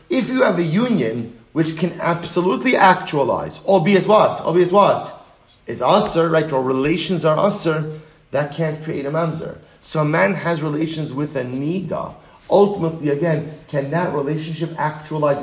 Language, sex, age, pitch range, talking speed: English, male, 30-49, 150-195 Hz, 150 wpm